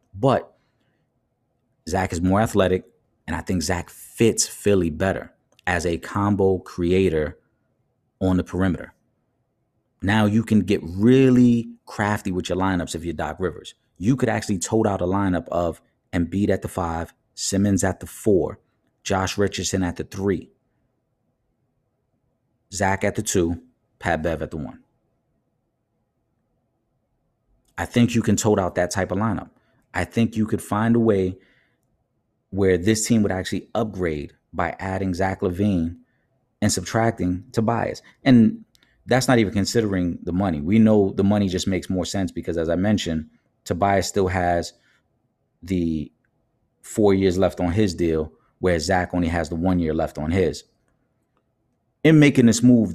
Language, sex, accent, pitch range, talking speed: English, male, American, 90-115 Hz, 155 wpm